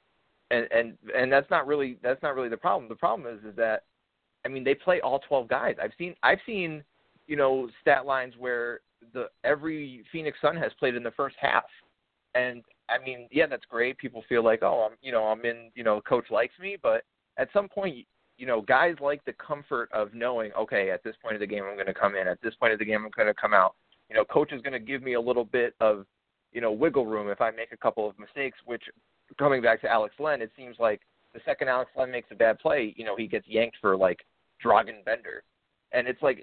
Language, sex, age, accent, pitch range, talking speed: English, male, 30-49, American, 110-140 Hz, 245 wpm